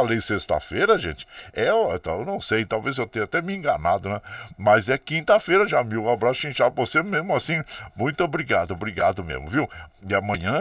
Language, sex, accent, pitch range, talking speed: Portuguese, male, Brazilian, 100-150 Hz, 180 wpm